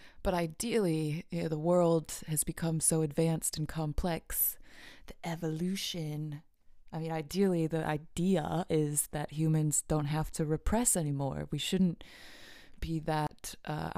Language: English